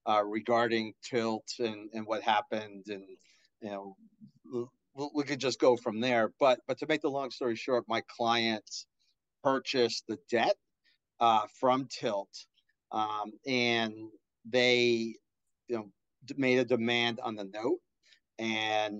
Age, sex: 40-59, male